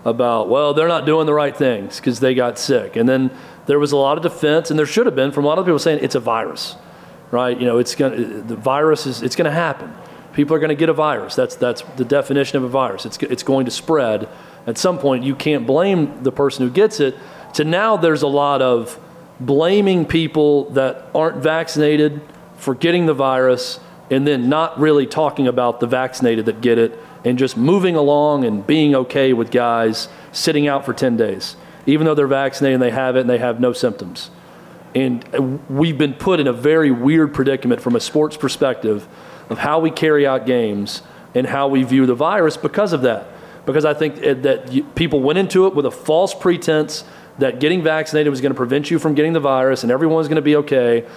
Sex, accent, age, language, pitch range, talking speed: male, American, 40-59, English, 130-160 Hz, 220 wpm